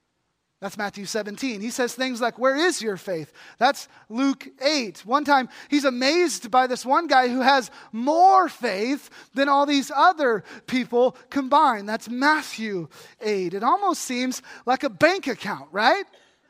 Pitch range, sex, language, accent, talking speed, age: 205-285 Hz, male, English, American, 155 wpm, 20-39